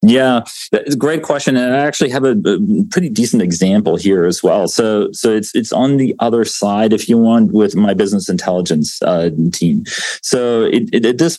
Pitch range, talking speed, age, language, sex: 90-115 Hz, 205 wpm, 40-59, English, male